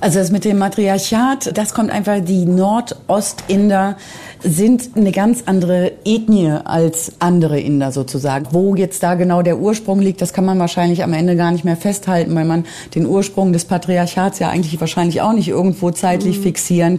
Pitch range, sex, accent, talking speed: 170-200 Hz, female, German, 175 wpm